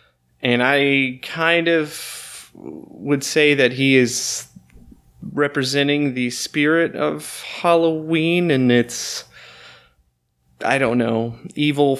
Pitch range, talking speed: 105-145 Hz, 100 wpm